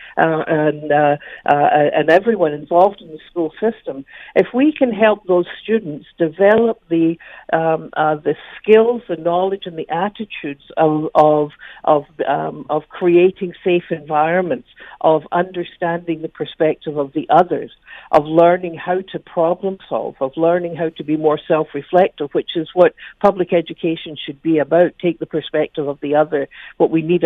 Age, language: 60-79, English